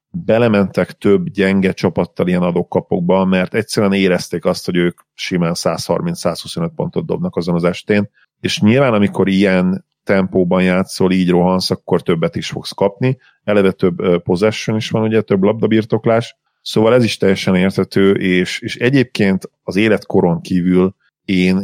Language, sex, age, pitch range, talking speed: Hungarian, male, 40-59, 90-105 Hz, 145 wpm